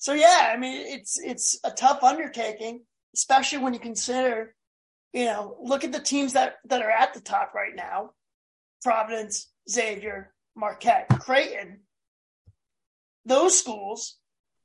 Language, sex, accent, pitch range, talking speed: English, male, American, 225-265 Hz, 135 wpm